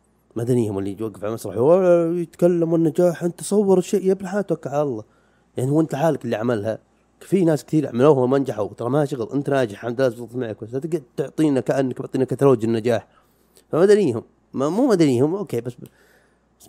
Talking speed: 170 wpm